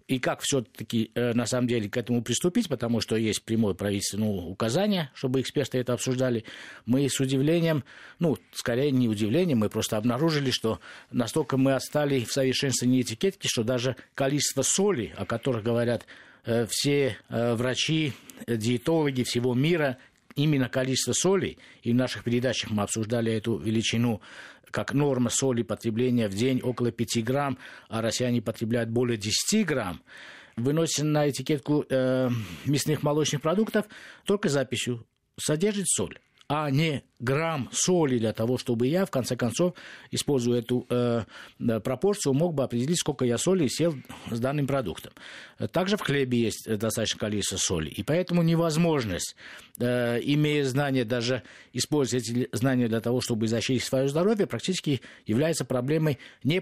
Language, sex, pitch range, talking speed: Russian, male, 115-145 Hz, 145 wpm